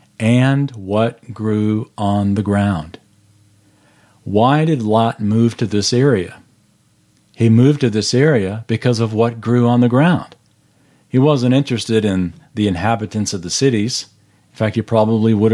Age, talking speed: 40-59, 150 wpm